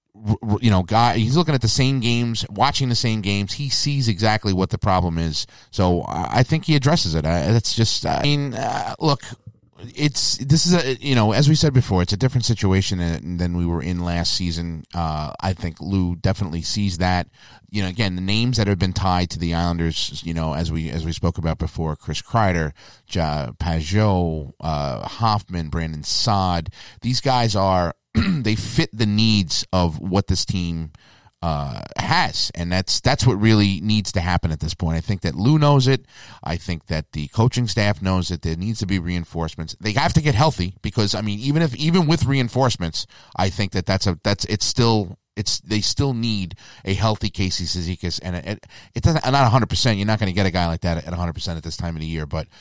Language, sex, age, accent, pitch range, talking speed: English, male, 30-49, American, 85-115 Hz, 215 wpm